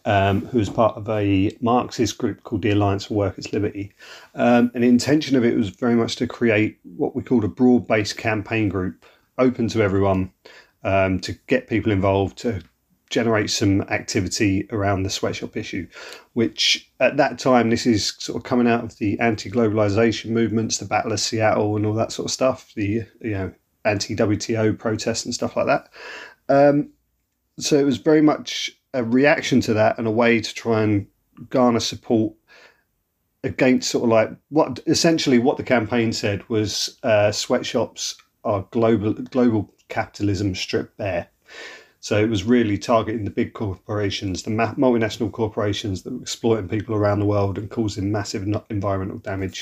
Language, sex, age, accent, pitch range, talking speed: English, male, 40-59, British, 105-120 Hz, 175 wpm